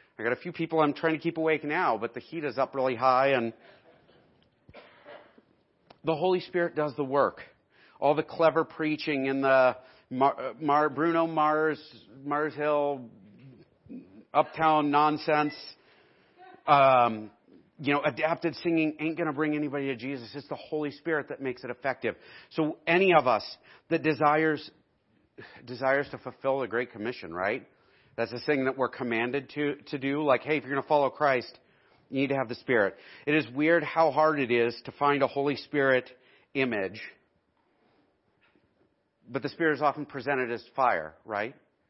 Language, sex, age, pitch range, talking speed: English, male, 40-59, 130-155 Hz, 165 wpm